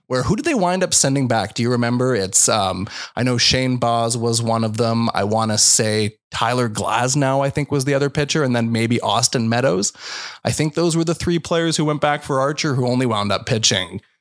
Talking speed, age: 230 wpm, 20-39